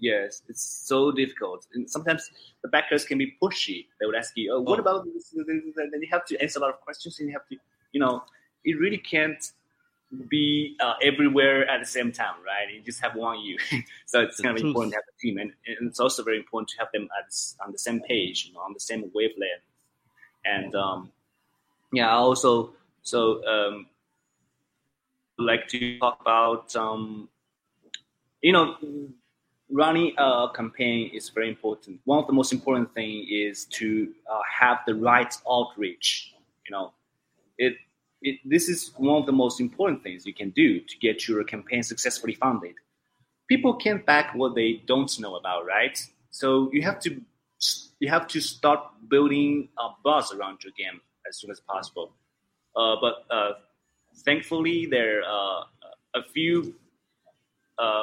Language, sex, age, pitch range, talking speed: English, male, 20-39, 115-155 Hz, 175 wpm